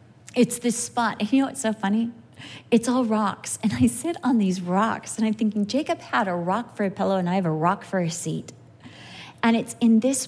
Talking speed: 235 wpm